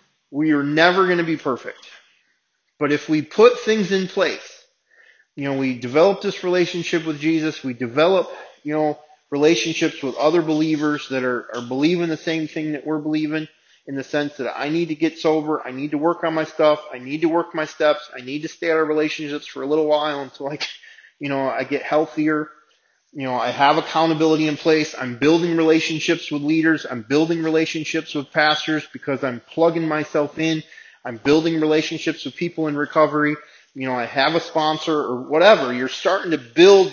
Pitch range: 140-160 Hz